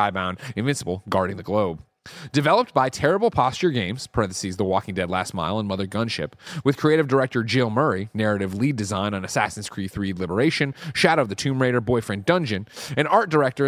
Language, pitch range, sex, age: English, 105-150 Hz, male, 30-49